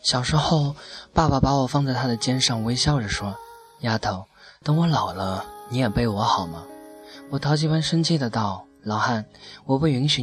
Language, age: Chinese, 20-39